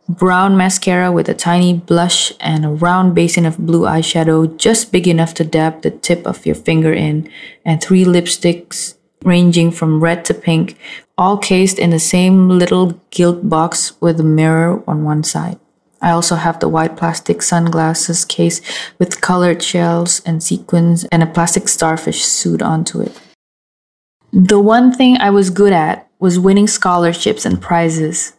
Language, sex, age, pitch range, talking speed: Indonesian, female, 20-39, 165-190 Hz, 165 wpm